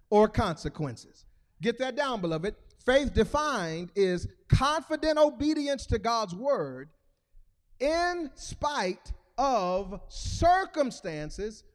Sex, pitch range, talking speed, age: male, 225-330 Hz, 90 wpm, 40-59